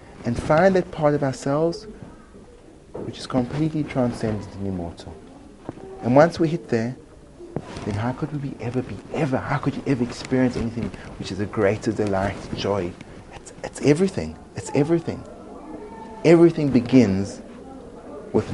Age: 30-49